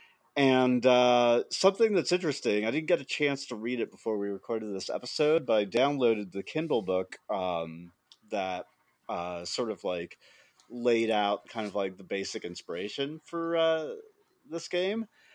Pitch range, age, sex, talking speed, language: 100-130 Hz, 30-49, male, 165 wpm, English